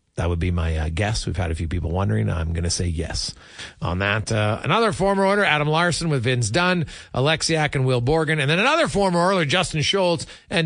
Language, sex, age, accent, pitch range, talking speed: English, male, 40-59, American, 100-150 Hz, 220 wpm